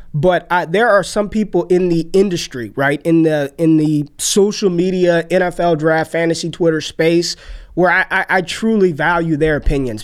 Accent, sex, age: American, male, 20-39